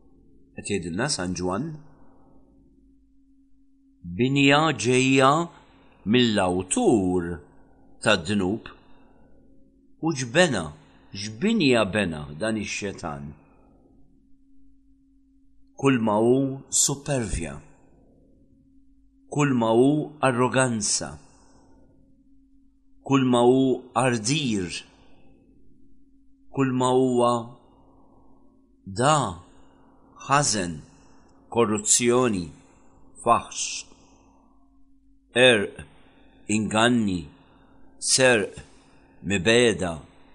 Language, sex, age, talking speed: English, male, 50-69, 50 wpm